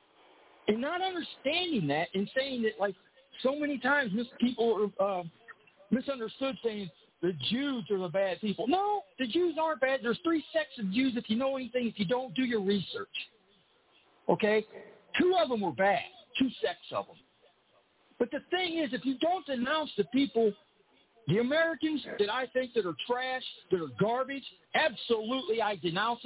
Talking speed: 170 wpm